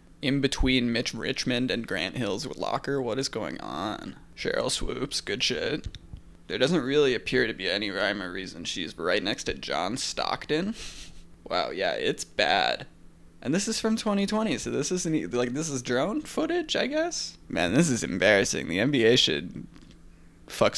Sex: male